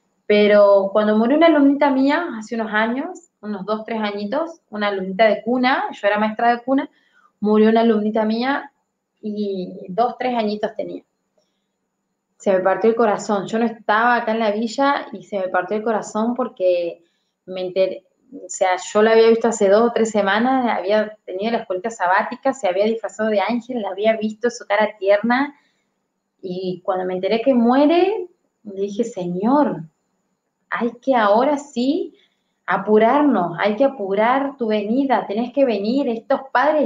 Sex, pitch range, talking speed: female, 200-255 Hz, 170 wpm